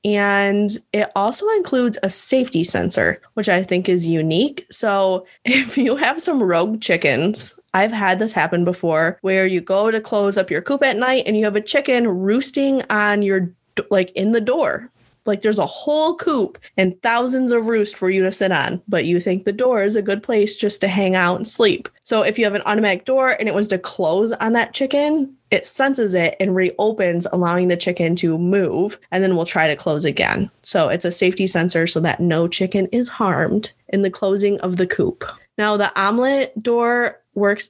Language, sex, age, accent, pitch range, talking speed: English, female, 10-29, American, 185-240 Hz, 205 wpm